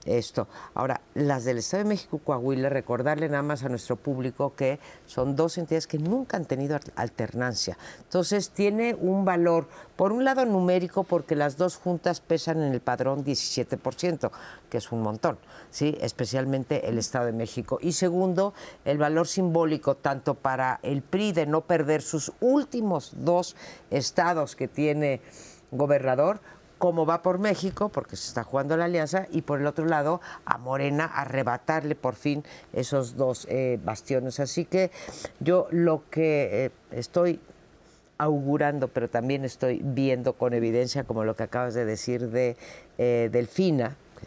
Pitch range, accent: 130-170 Hz, Spanish